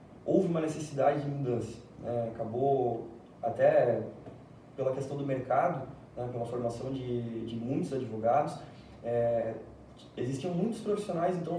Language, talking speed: Portuguese, 125 wpm